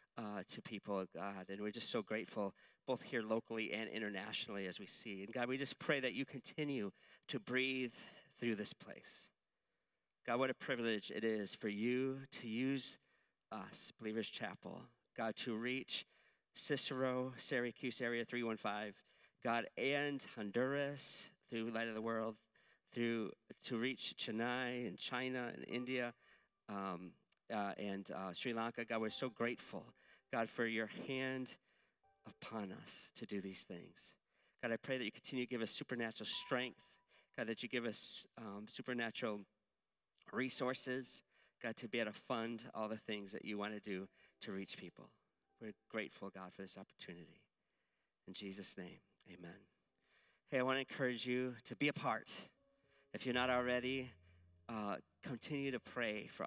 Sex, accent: male, American